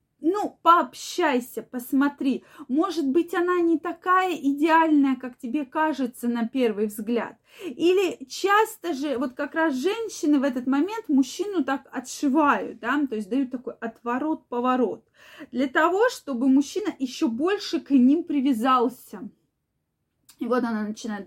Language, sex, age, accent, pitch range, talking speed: Russian, female, 20-39, native, 240-315 Hz, 135 wpm